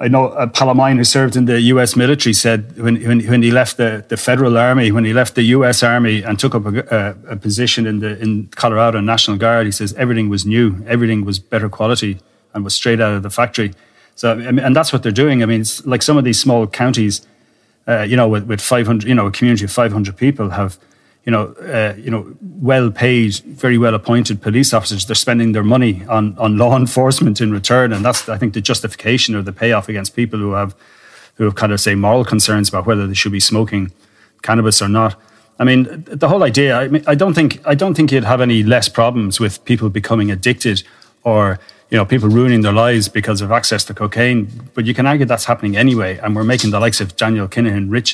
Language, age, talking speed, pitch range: English, 30-49, 235 wpm, 105-125 Hz